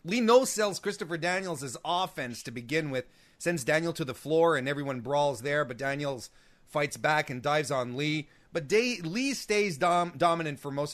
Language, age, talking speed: English, 30-49, 180 wpm